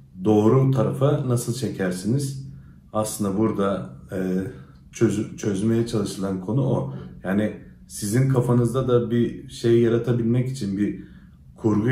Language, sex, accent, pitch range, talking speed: Turkish, male, native, 100-130 Hz, 105 wpm